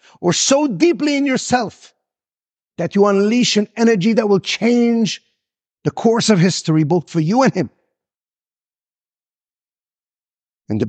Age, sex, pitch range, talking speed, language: 50-69, male, 200-245 Hz, 130 wpm, English